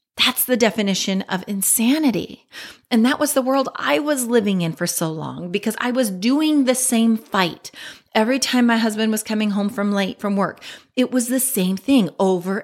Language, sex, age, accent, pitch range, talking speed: English, female, 30-49, American, 195-245 Hz, 195 wpm